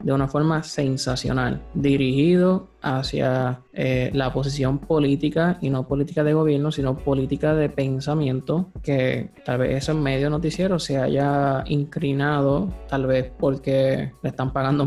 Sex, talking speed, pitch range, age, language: male, 135 wpm, 135-155 Hz, 20-39, Spanish